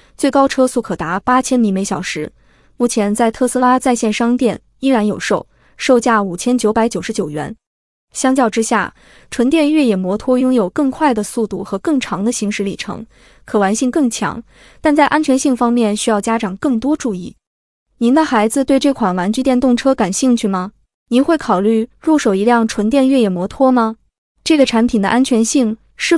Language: Chinese